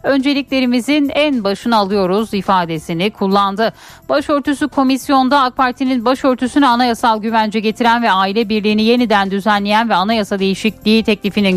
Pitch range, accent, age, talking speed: 195-260 Hz, native, 10-29, 120 wpm